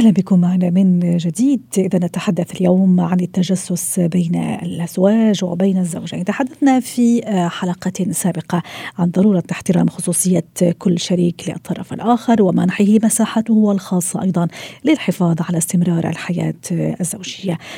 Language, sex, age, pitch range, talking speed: Arabic, female, 40-59, 175-200 Hz, 120 wpm